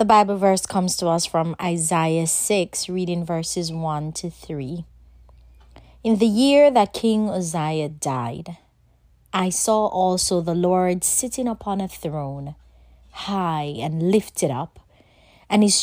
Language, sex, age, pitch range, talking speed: English, female, 30-49, 150-195 Hz, 135 wpm